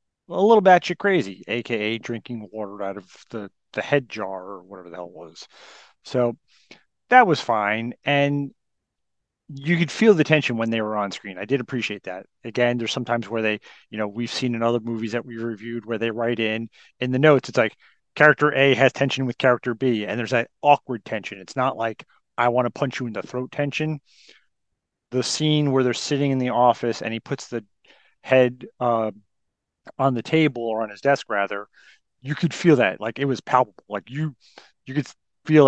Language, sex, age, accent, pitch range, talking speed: English, male, 40-59, American, 110-130 Hz, 205 wpm